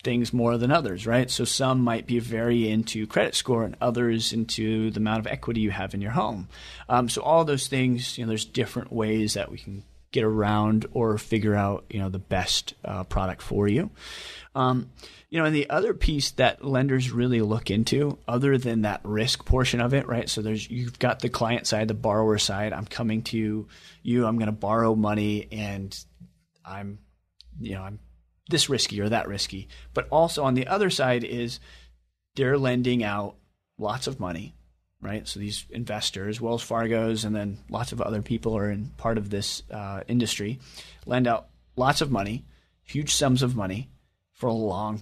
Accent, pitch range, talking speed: American, 105-125 Hz, 190 wpm